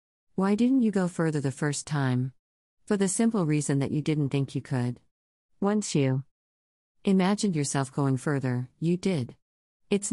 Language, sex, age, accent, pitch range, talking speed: English, female, 50-69, American, 130-170 Hz, 160 wpm